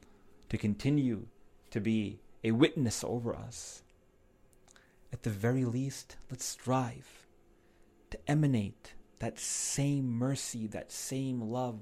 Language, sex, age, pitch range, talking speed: English, male, 30-49, 110-135 Hz, 110 wpm